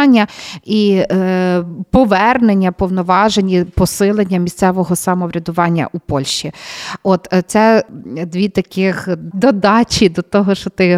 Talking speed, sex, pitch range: 95 wpm, female, 185-225 Hz